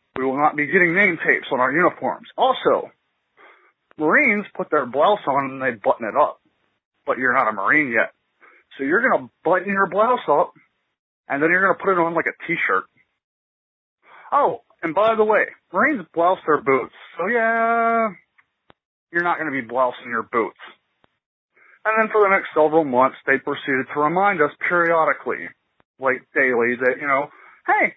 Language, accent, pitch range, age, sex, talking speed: English, American, 130-185 Hz, 30-49, male, 180 wpm